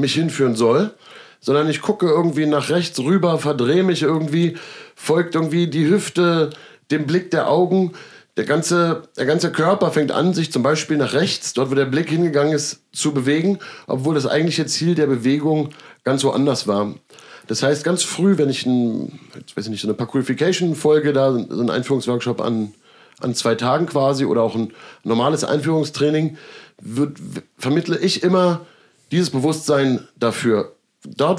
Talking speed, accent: 165 wpm, German